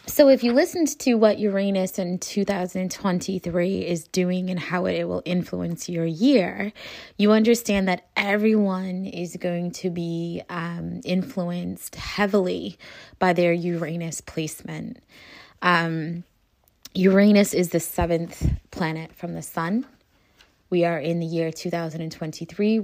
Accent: American